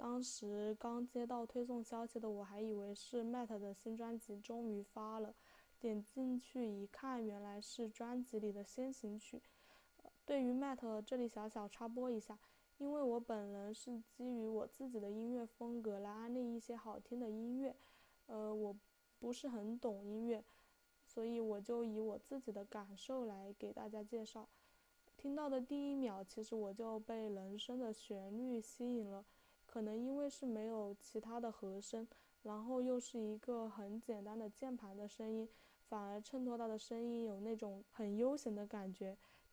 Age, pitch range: 10-29, 210-240 Hz